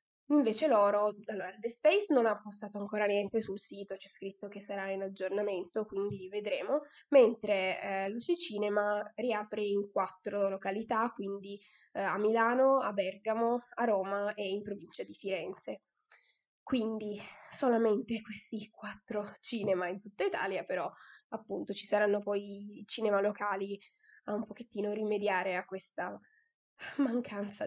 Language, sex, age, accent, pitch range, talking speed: Italian, female, 10-29, native, 195-225 Hz, 140 wpm